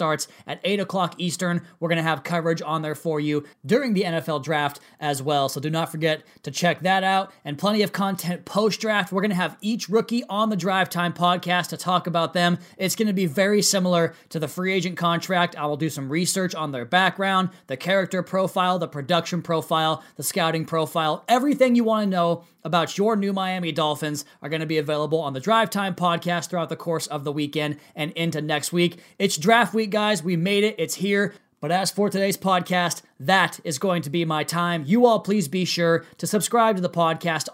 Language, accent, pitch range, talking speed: English, American, 160-195 Hz, 220 wpm